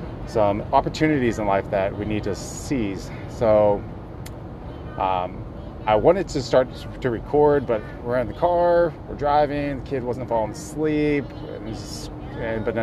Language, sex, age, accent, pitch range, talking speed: English, male, 30-49, American, 105-125 Hz, 155 wpm